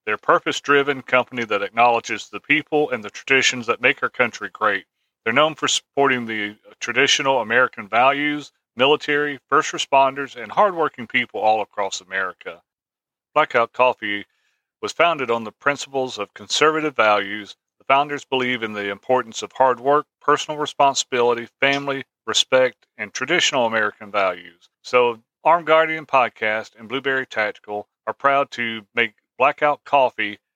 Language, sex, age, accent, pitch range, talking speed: English, male, 40-59, American, 110-145 Hz, 145 wpm